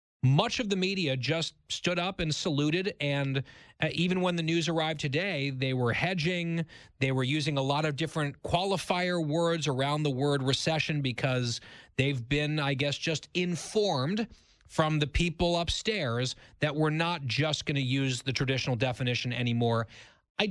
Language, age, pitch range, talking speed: English, 30-49, 130-165 Hz, 160 wpm